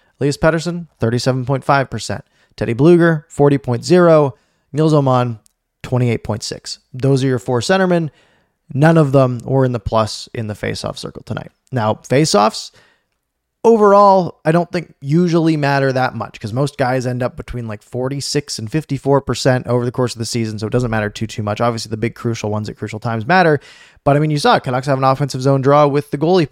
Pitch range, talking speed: 115-150 Hz, 190 wpm